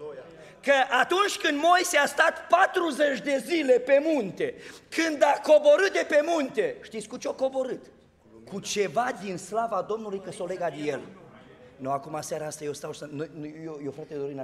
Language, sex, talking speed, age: Romanian, male, 175 wpm, 40-59